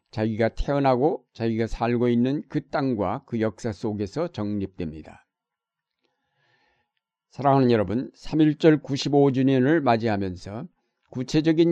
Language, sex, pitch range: Korean, male, 115-140 Hz